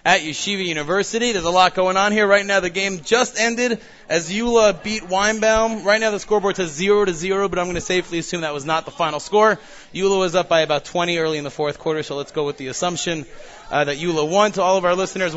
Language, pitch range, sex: English, 165-200 Hz, male